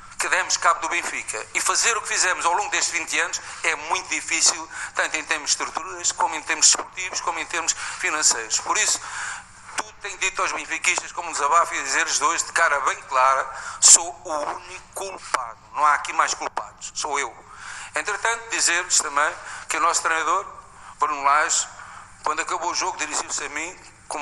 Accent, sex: Portuguese, male